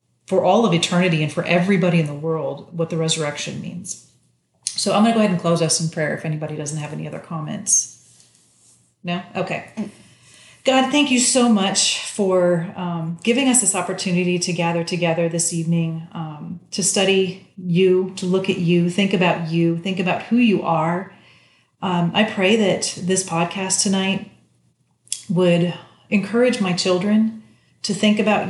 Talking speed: 170 wpm